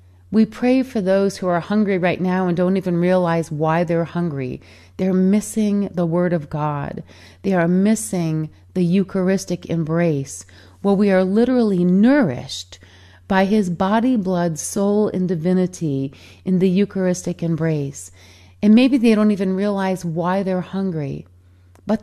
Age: 40-59